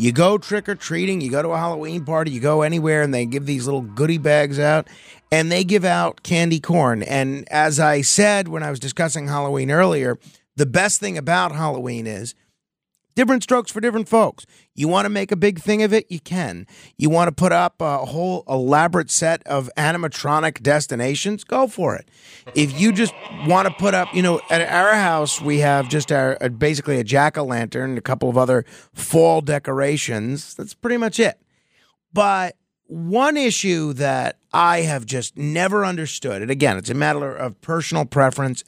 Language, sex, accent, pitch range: English, male, American, 145-200 Hz